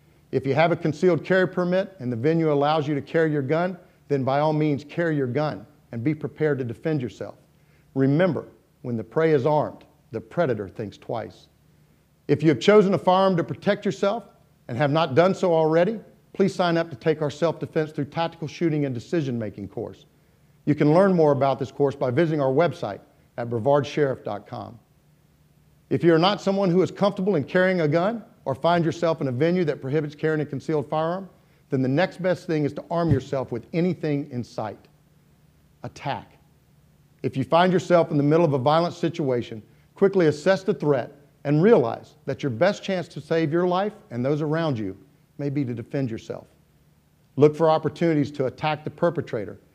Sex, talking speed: male, 190 wpm